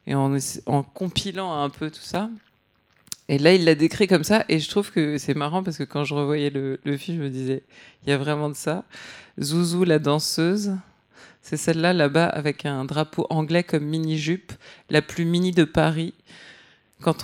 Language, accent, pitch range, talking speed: French, French, 145-165 Hz, 195 wpm